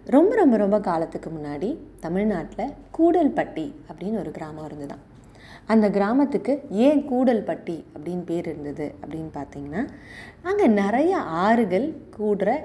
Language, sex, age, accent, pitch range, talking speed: English, female, 20-39, Indian, 160-225 Hz, 115 wpm